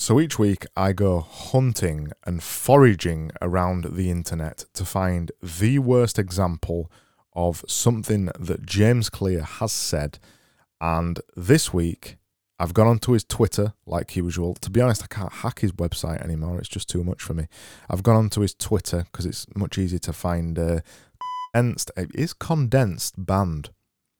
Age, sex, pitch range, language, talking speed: 20-39, male, 90-110 Hz, English, 160 wpm